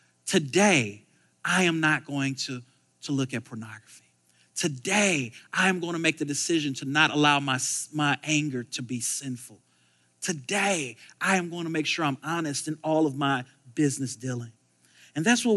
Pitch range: 135-210 Hz